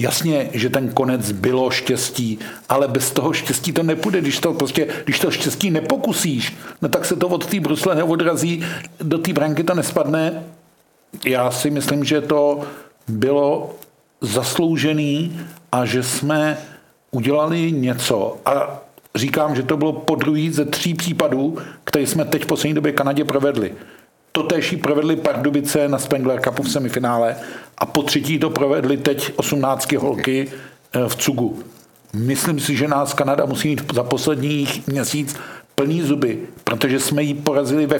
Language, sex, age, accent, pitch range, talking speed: Czech, male, 50-69, native, 135-160 Hz, 155 wpm